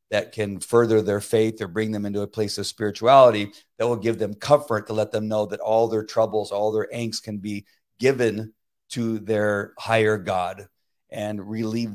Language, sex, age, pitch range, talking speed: English, male, 50-69, 100-115 Hz, 190 wpm